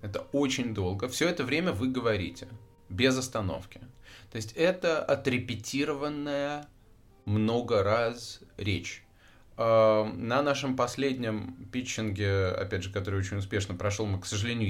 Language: Russian